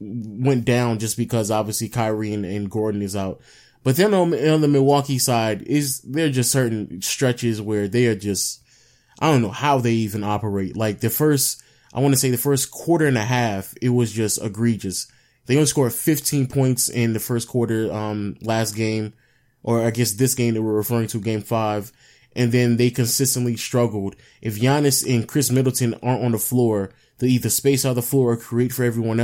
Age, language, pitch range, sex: 20-39, English, 115-135 Hz, male